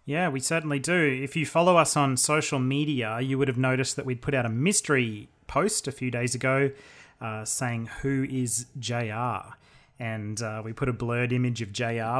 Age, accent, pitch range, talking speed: 30-49, Australian, 115-135 Hz, 195 wpm